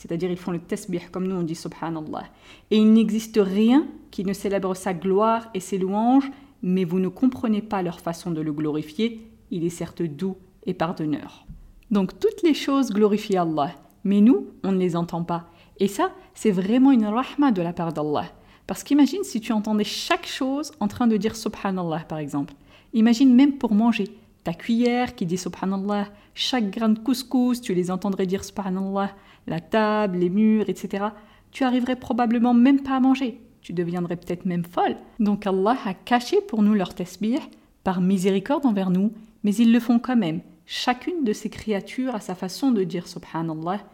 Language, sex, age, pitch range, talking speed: French, female, 40-59, 185-240 Hz, 200 wpm